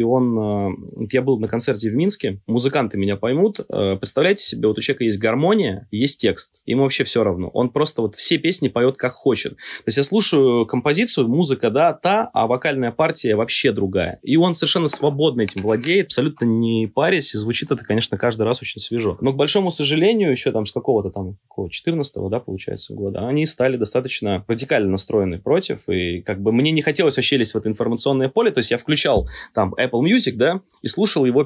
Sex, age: male, 20-39